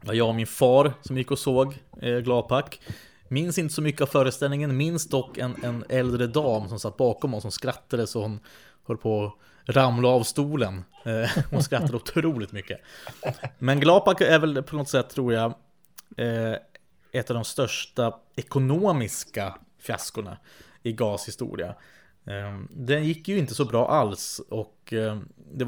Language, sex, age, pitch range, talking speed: Swedish, male, 20-39, 110-135 Hz, 150 wpm